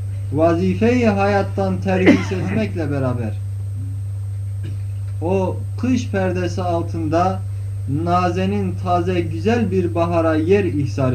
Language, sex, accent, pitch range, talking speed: Turkish, male, native, 95-105 Hz, 85 wpm